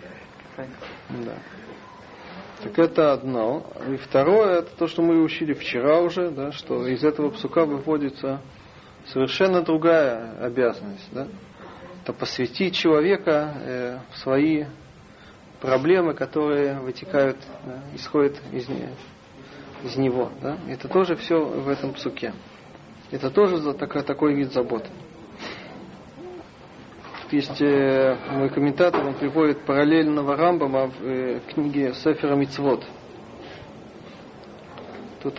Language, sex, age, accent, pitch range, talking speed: Russian, male, 40-59, native, 135-165 Hz, 105 wpm